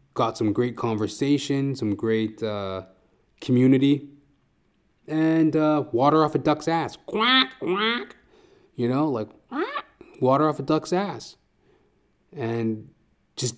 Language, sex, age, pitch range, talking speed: English, male, 20-39, 105-140 Hz, 125 wpm